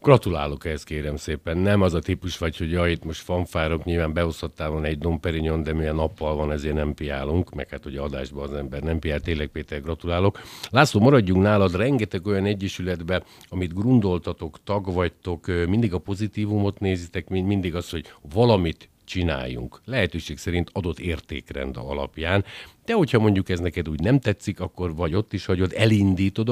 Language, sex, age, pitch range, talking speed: Hungarian, male, 50-69, 80-95 Hz, 165 wpm